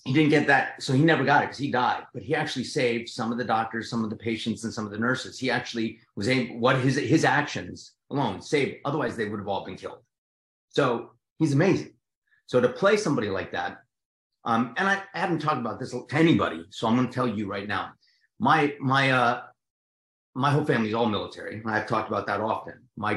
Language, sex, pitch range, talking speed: English, male, 110-140 Hz, 230 wpm